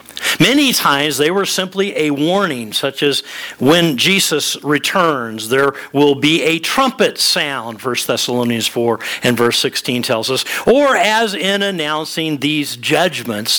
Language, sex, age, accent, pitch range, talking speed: English, male, 50-69, American, 130-195 Hz, 140 wpm